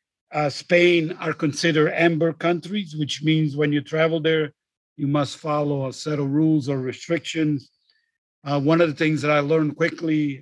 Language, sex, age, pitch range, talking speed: English, male, 50-69, 140-155 Hz, 175 wpm